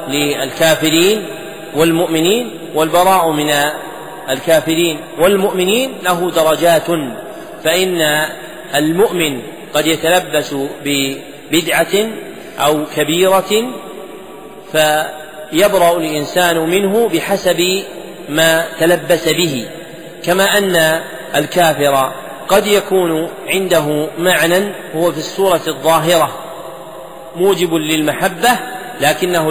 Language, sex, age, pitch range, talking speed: Arabic, male, 40-59, 155-180 Hz, 75 wpm